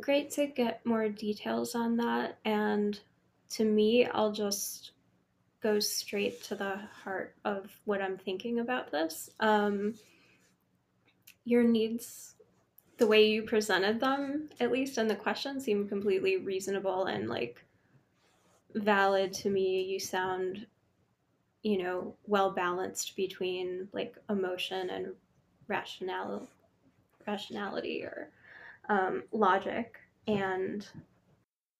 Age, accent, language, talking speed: 10-29, American, English, 115 wpm